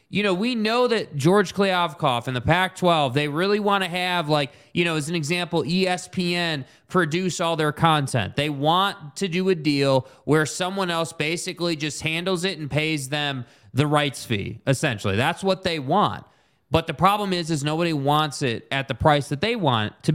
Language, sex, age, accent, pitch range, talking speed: English, male, 20-39, American, 150-195 Hz, 195 wpm